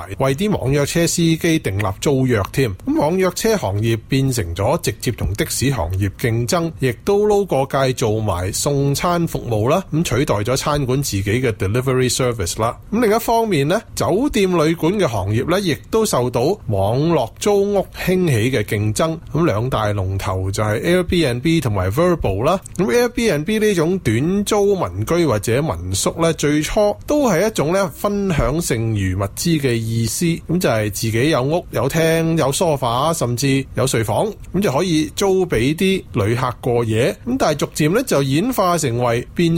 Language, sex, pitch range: Chinese, male, 115-180 Hz